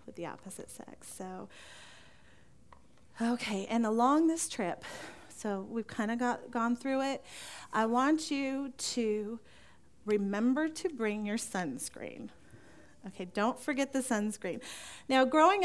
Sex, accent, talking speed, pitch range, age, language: female, American, 125 wpm, 210-285 Hz, 40-59, English